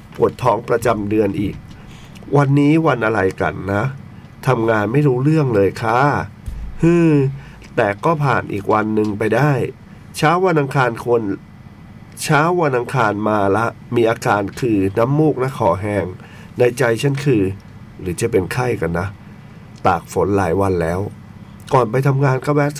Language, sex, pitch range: Thai, male, 100-145 Hz